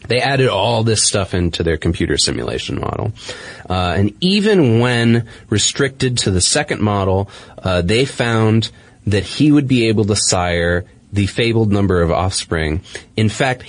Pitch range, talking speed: 90-115 Hz, 160 wpm